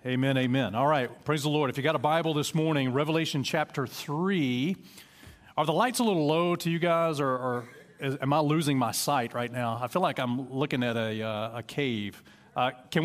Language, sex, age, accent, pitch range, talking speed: English, male, 40-59, American, 135-170 Hz, 220 wpm